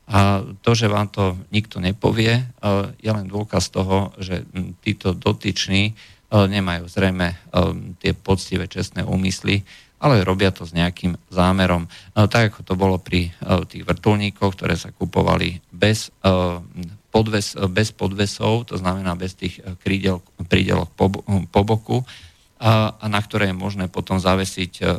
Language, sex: Slovak, male